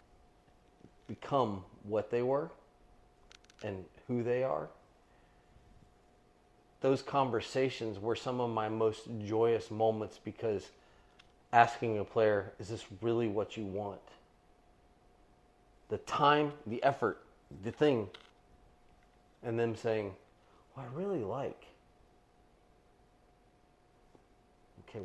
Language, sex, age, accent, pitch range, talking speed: English, male, 30-49, American, 100-120 Hz, 95 wpm